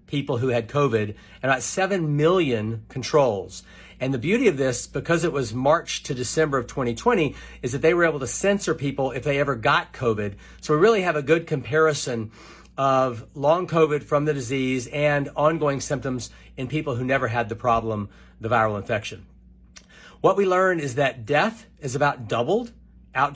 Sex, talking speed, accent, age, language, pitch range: male, 180 wpm, American, 40-59, English, 125-160 Hz